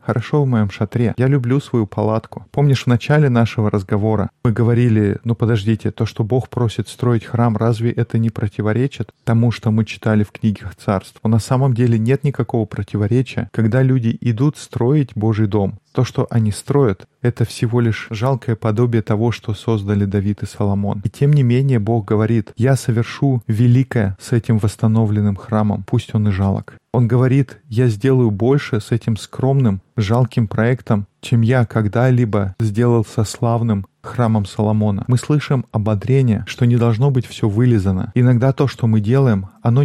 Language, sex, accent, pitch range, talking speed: Russian, male, native, 110-125 Hz, 165 wpm